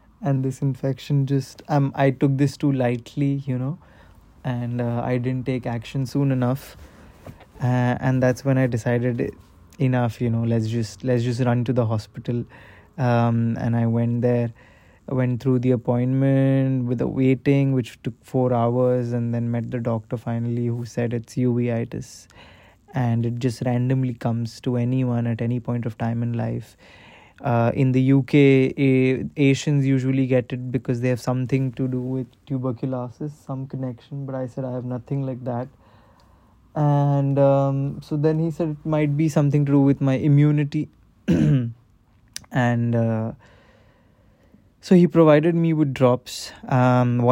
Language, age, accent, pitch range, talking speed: English, 20-39, Indian, 120-135 Hz, 165 wpm